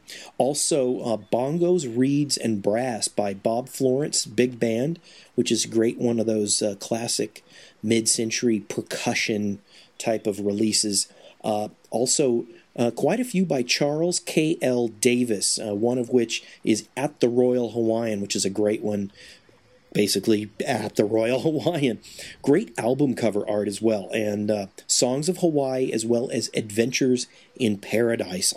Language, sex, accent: English, male, American